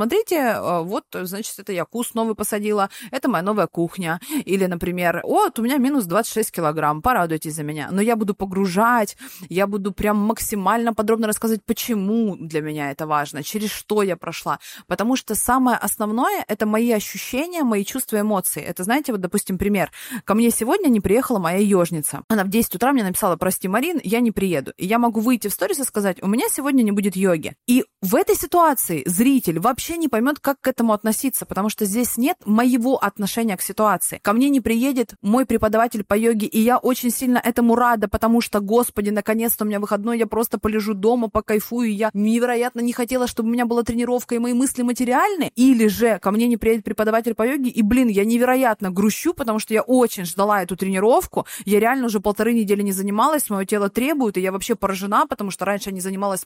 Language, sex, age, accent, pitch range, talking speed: Russian, female, 20-39, native, 200-240 Hz, 205 wpm